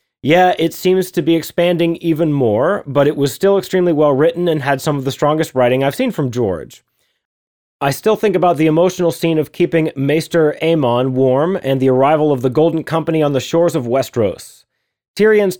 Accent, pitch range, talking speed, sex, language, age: American, 135-170 Hz, 195 wpm, male, English, 30-49